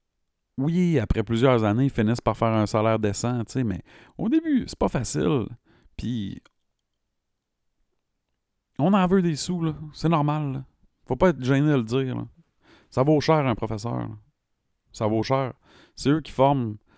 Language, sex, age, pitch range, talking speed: French, male, 30-49, 100-135 Hz, 165 wpm